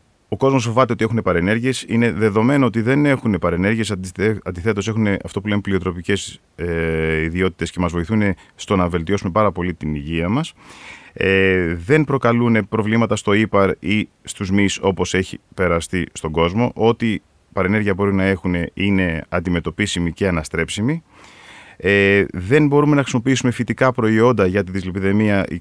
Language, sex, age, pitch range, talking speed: Greek, male, 30-49, 90-110 Hz, 150 wpm